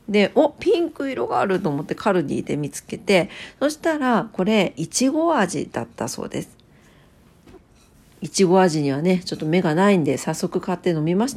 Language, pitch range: Japanese, 165-255 Hz